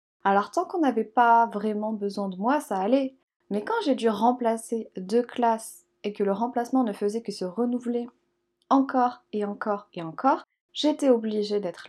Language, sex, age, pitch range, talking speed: French, female, 20-39, 200-275 Hz, 175 wpm